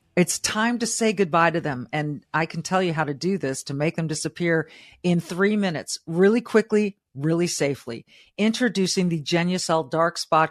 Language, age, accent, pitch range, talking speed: English, 50-69, American, 160-205 Hz, 185 wpm